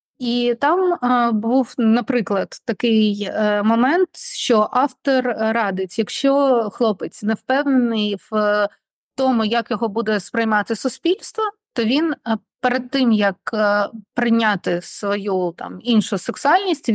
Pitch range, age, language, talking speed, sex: 210-255 Hz, 30-49, Ukrainian, 105 wpm, female